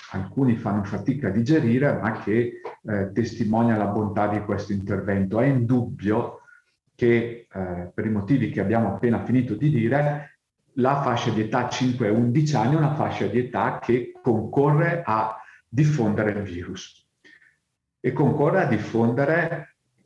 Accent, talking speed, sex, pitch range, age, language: native, 145 wpm, male, 100-130 Hz, 50-69, Italian